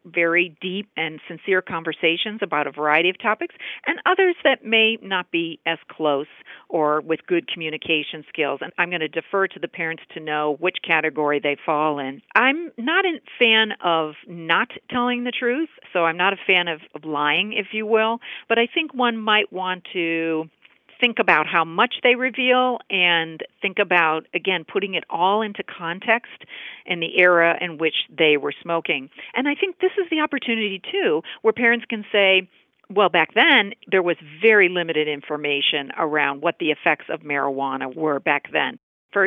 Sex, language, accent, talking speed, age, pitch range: female, English, American, 180 wpm, 50-69, 160-215 Hz